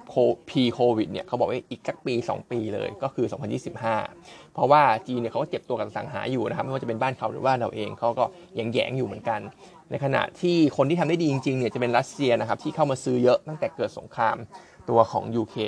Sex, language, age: male, Thai, 20-39